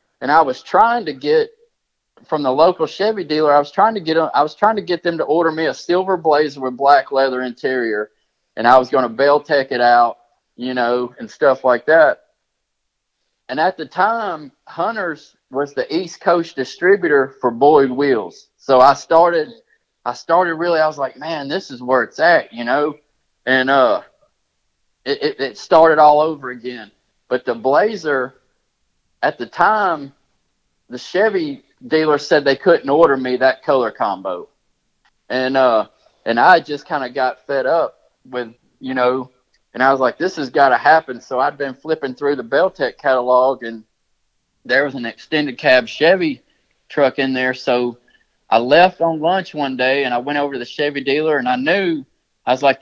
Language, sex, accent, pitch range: English, male, American, 125-165 Hz